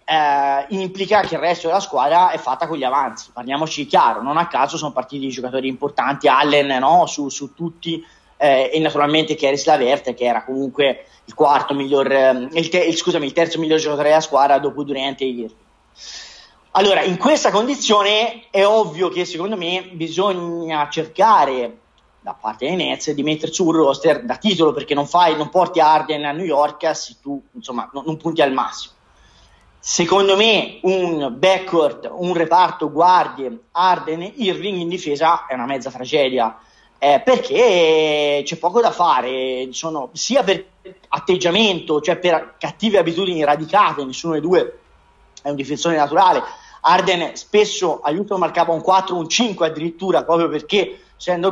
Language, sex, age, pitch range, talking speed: Italian, male, 30-49, 145-185 Hz, 165 wpm